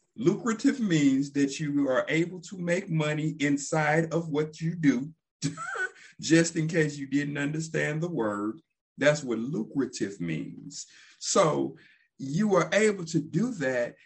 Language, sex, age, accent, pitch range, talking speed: English, male, 50-69, American, 145-185 Hz, 140 wpm